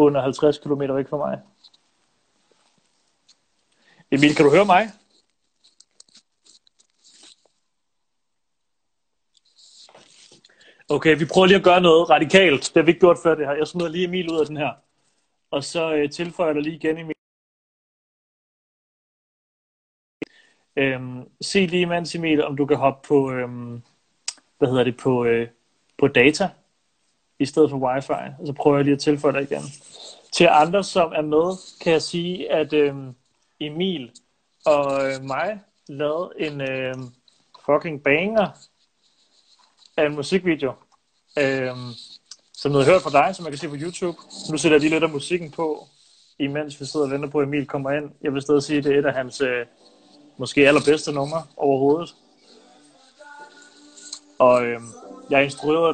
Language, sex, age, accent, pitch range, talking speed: Danish, male, 30-49, native, 135-165 Hz, 155 wpm